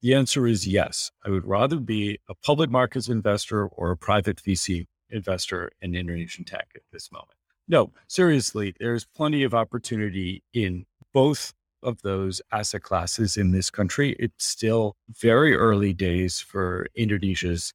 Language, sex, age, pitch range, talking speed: English, male, 40-59, 90-120 Hz, 150 wpm